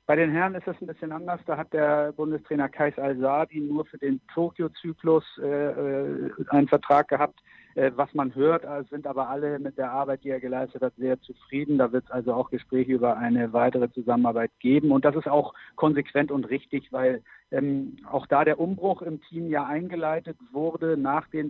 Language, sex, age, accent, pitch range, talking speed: German, male, 60-79, German, 130-155 Hz, 195 wpm